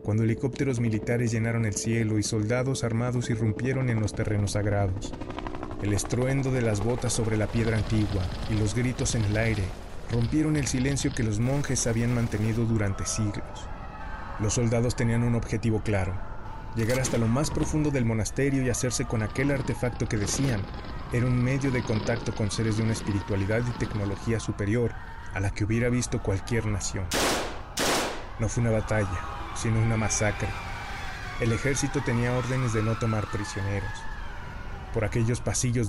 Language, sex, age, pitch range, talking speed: Spanish, male, 30-49, 105-120 Hz, 160 wpm